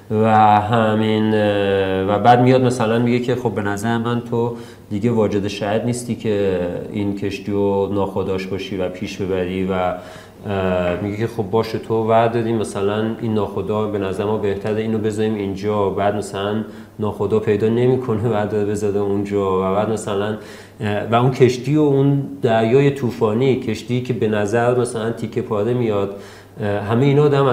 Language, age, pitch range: Persian, 40-59, 100-120 Hz